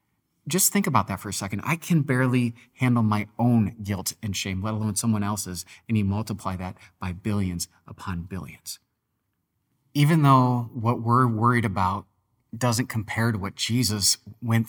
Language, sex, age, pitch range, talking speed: English, male, 30-49, 105-130 Hz, 165 wpm